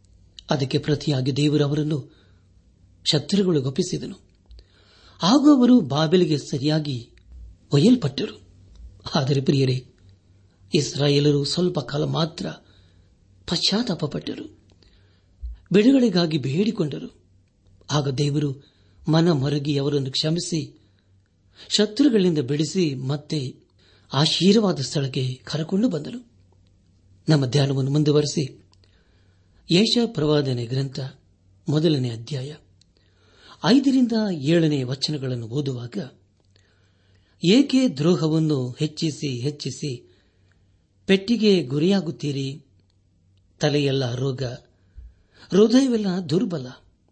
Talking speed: 65 wpm